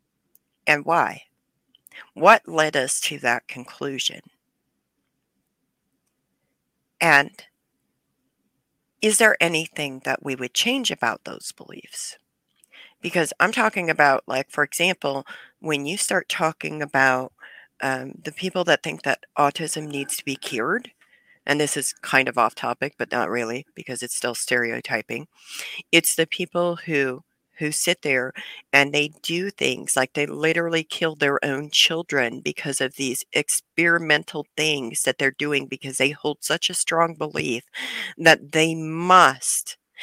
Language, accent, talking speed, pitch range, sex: English, American, 140 wpm, 135-165 Hz, female